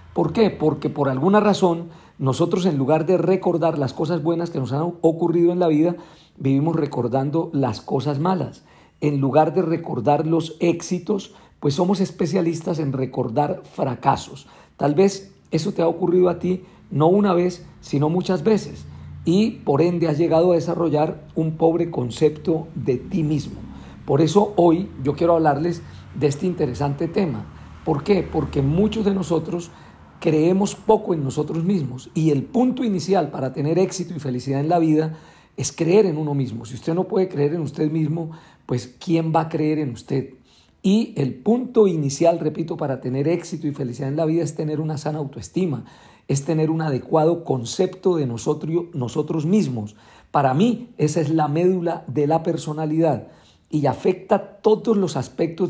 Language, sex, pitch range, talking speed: Spanish, male, 145-180 Hz, 170 wpm